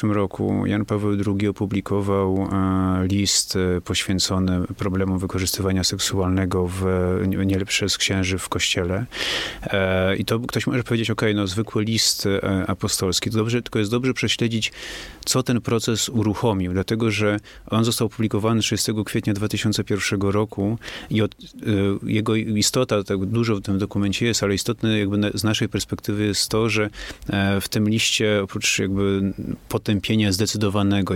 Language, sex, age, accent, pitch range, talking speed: Polish, male, 30-49, native, 100-110 Hz, 135 wpm